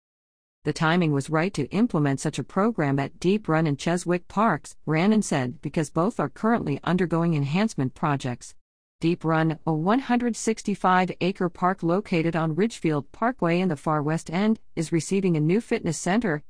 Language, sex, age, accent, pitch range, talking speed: English, female, 50-69, American, 145-195 Hz, 160 wpm